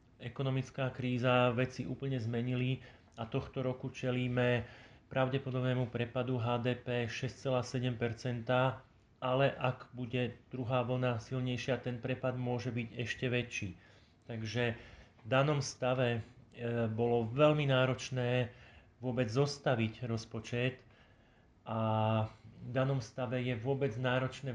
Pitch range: 120-130 Hz